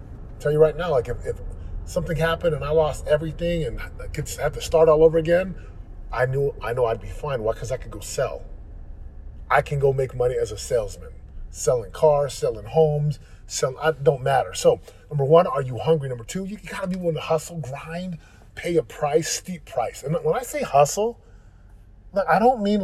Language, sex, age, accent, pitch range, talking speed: English, male, 30-49, American, 125-185 Hz, 210 wpm